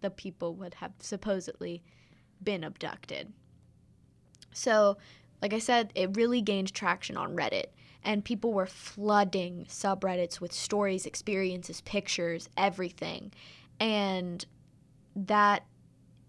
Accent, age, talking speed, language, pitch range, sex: American, 20-39, 105 wpm, English, 180-210 Hz, female